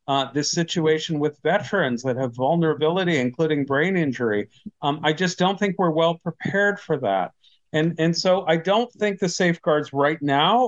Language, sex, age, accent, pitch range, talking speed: English, male, 50-69, American, 150-195 Hz, 175 wpm